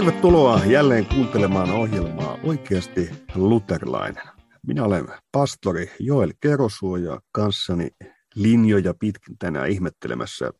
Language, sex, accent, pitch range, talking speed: Finnish, male, native, 95-125 Hz, 90 wpm